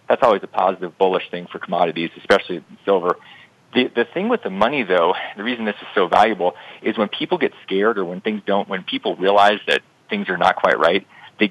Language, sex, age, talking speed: English, male, 40-59, 220 wpm